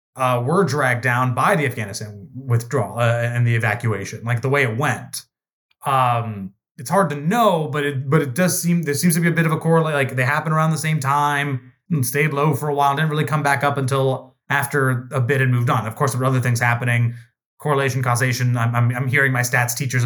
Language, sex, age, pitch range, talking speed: English, male, 20-39, 120-145 Hz, 235 wpm